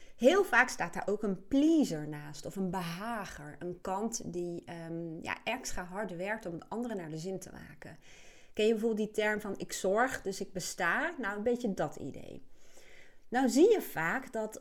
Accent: Dutch